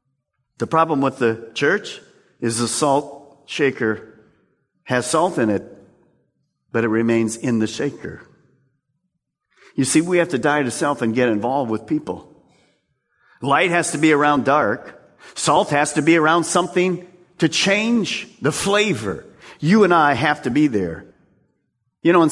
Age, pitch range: 50-69, 130-200 Hz